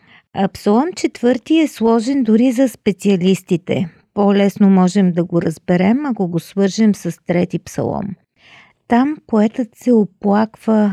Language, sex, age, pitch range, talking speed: Bulgarian, female, 50-69, 185-220 Hz, 125 wpm